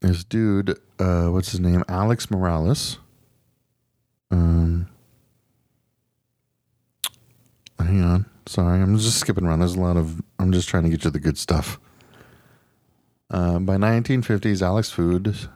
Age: 40-59